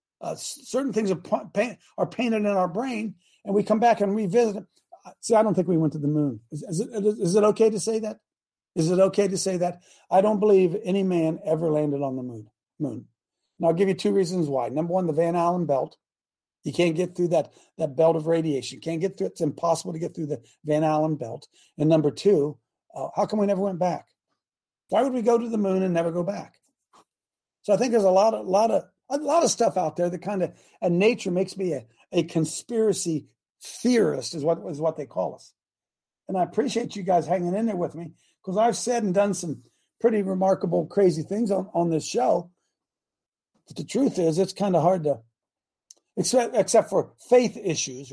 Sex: male